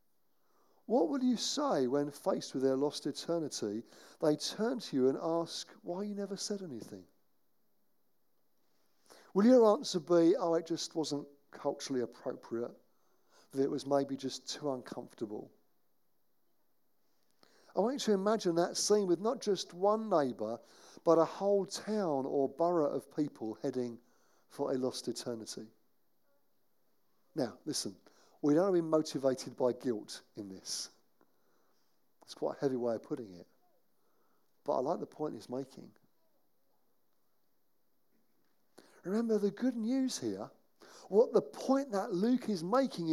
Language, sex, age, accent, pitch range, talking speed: English, male, 50-69, British, 145-215 Hz, 140 wpm